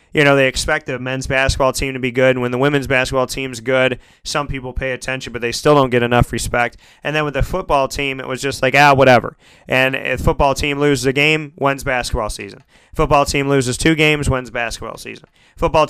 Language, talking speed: English, 230 wpm